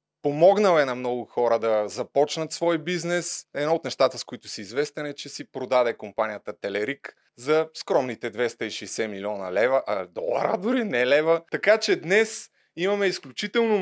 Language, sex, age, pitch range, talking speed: Bulgarian, male, 20-39, 120-160 Hz, 160 wpm